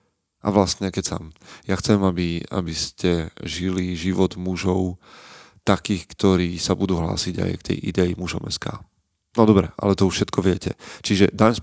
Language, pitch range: Slovak, 90-105 Hz